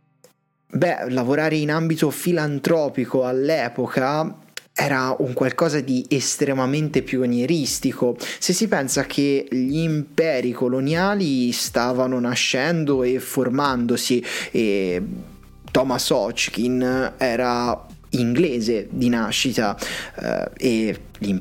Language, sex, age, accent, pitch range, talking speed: Italian, male, 20-39, native, 125-160 Hz, 85 wpm